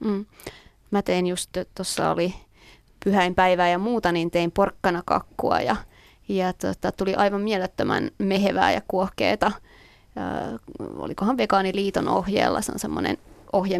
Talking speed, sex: 130 wpm, female